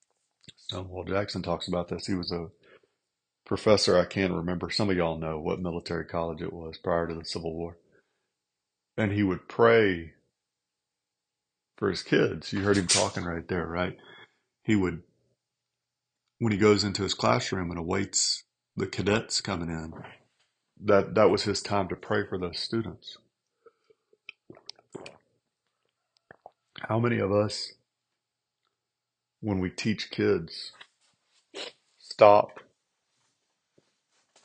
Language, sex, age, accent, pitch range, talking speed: English, male, 40-59, American, 80-95 Hz, 125 wpm